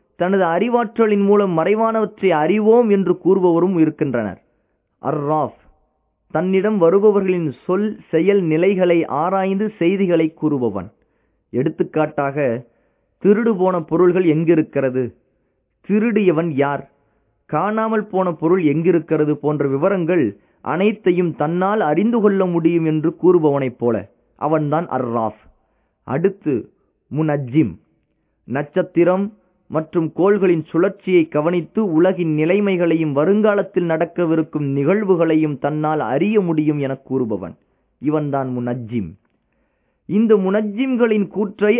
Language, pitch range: Tamil, 155-210 Hz